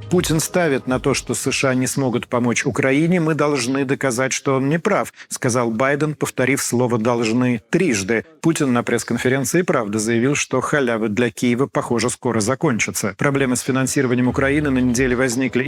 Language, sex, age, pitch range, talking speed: Russian, male, 40-59, 125-155 Hz, 160 wpm